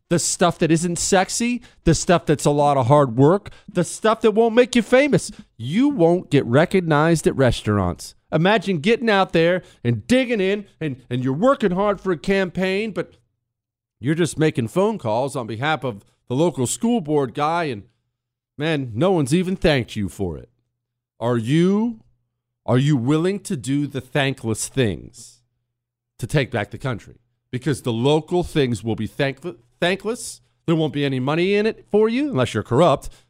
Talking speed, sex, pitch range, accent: 180 wpm, male, 125-190 Hz, American